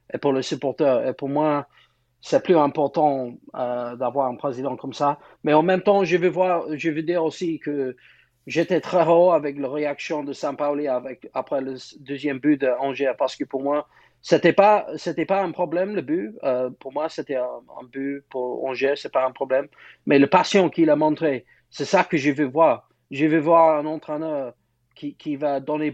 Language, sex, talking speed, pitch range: French, male, 210 wpm, 135-160 Hz